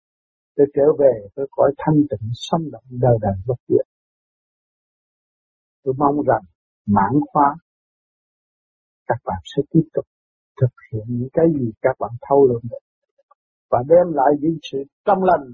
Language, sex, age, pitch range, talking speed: Vietnamese, male, 60-79, 120-165 Hz, 150 wpm